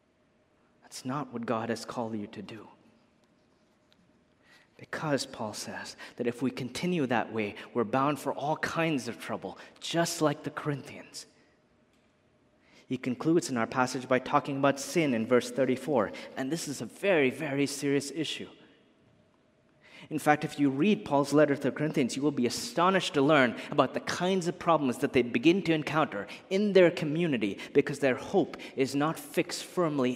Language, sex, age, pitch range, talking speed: English, male, 30-49, 125-150 Hz, 170 wpm